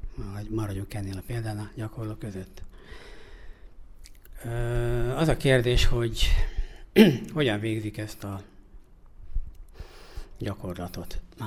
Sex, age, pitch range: male, 60-79, 100-125 Hz